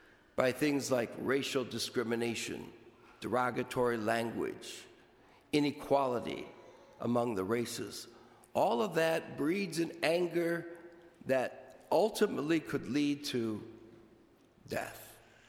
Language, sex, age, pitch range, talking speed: English, male, 50-69, 120-165 Hz, 90 wpm